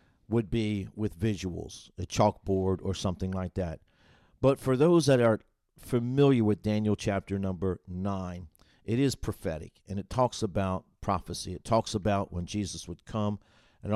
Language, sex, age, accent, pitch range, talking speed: English, male, 50-69, American, 95-110 Hz, 160 wpm